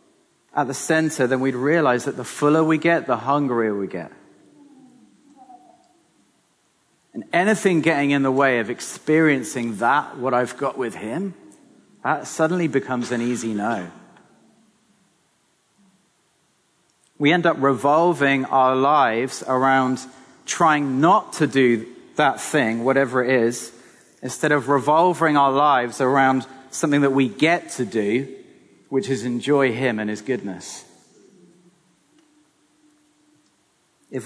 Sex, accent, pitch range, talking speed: male, British, 120-170 Hz, 125 wpm